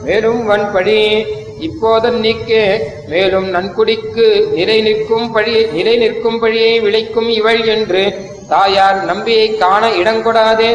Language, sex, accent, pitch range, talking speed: Tamil, male, native, 200-225 Hz, 100 wpm